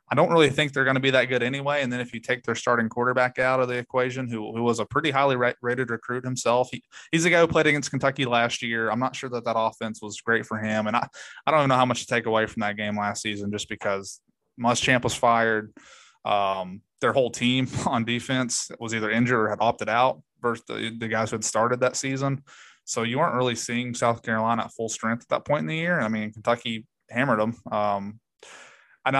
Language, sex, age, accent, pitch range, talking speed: English, male, 20-39, American, 110-130 Hz, 245 wpm